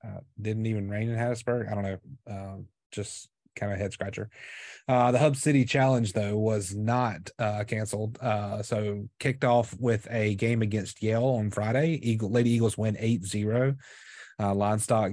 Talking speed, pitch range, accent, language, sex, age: 170 wpm, 100-120 Hz, American, English, male, 30-49